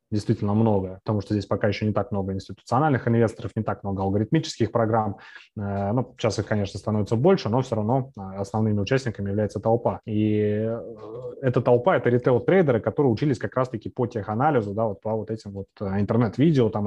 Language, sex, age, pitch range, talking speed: Russian, male, 20-39, 100-120 Hz, 180 wpm